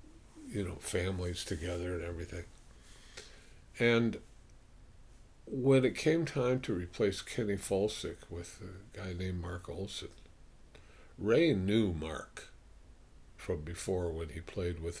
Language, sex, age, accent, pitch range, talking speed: English, male, 50-69, American, 85-110 Hz, 120 wpm